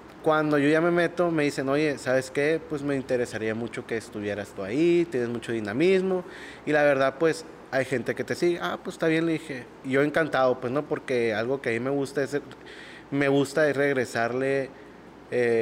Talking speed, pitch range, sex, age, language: 210 wpm, 120-150 Hz, male, 30-49, Spanish